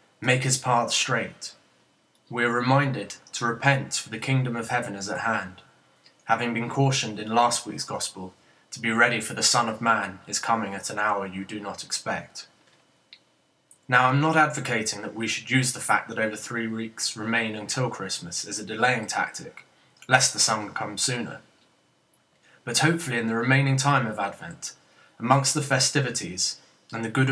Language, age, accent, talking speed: English, 20-39, British, 180 wpm